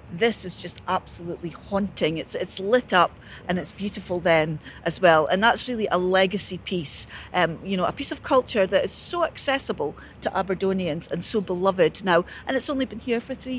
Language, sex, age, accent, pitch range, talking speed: English, female, 40-59, British, 190-245 Hz, 200 wpm